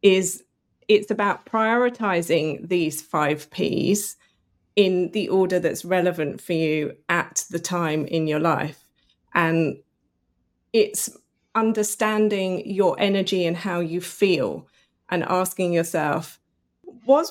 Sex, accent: female, British